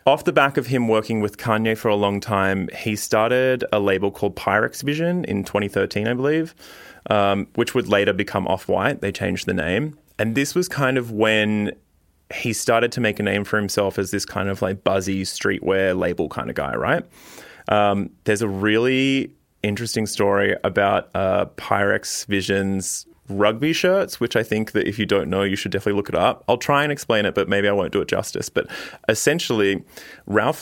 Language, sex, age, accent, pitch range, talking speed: English, male, 20-39, Australian, 100-115 Hz, 195 wpm